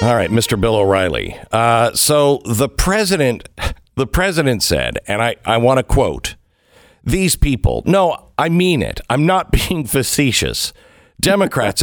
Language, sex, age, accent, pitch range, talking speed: English, male, 50-69, American, 110-160 Hz, 135 wpm